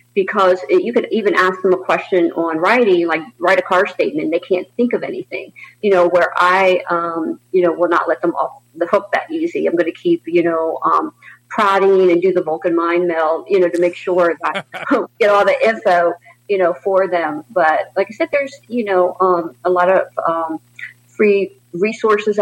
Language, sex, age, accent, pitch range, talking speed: English, female, 50-69, American, 175-195 Hz, 210 wpm